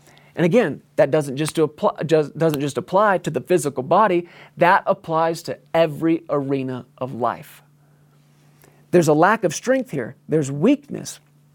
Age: 40-59